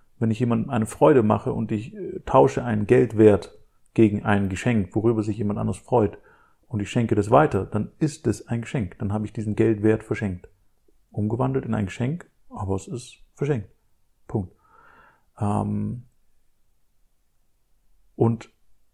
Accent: German